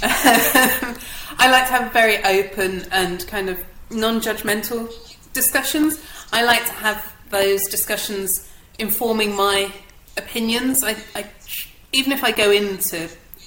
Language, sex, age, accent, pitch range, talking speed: English, female, 30-49, British, 175-210 Hz, 110 wpm